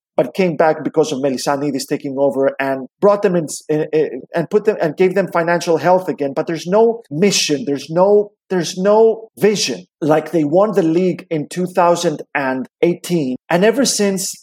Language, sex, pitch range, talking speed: Hebrew, male, 160-210 Hz, 200 wpm